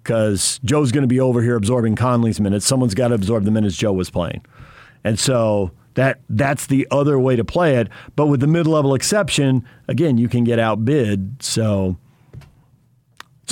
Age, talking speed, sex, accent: 50-69, 180 wpm, male, American